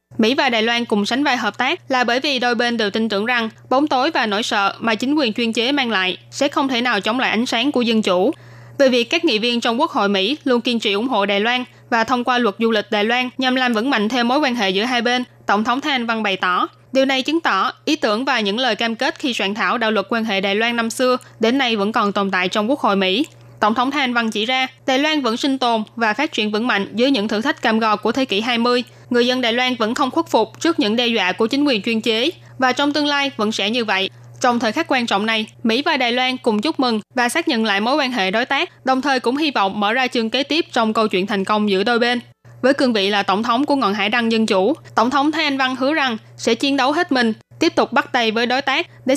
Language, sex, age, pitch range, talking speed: Vietnamese, female, 20-39, 215-265 Hz, 290 wpm